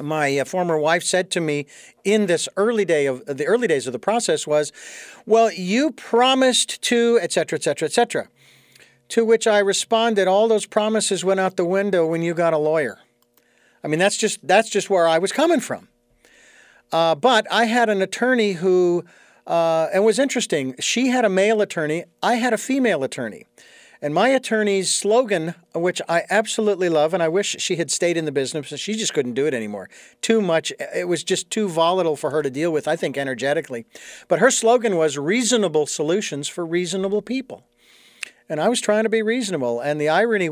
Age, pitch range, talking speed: 50-69, 160-220 Hz, 200 wpm